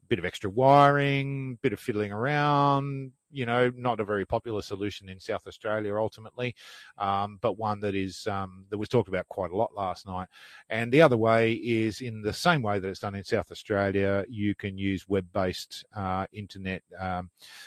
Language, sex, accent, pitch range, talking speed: English, male, Australian, 100-125 Hz, 190 wpm